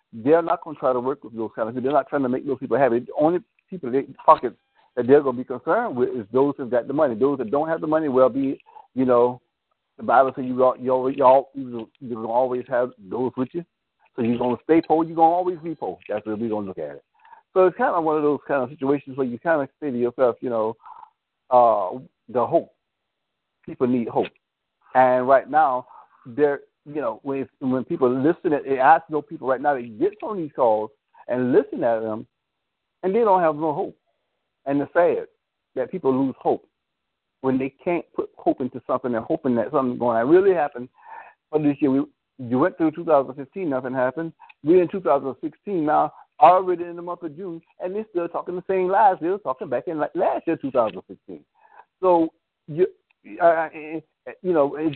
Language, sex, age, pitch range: English, male, 60-79, 125-170 Hz